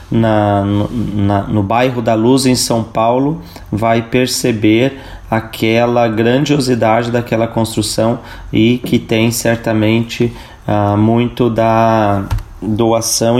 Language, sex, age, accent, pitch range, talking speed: Portuguese, male, 30-49, Brazilian, 105-125 Hz, 100 wpm